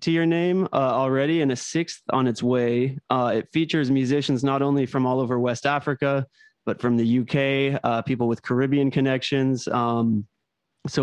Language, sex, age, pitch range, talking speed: English, male, 30-49, 115-140 Hz, 180 wpm